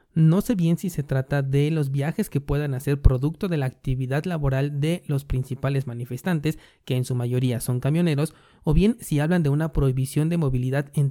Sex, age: male, 30-49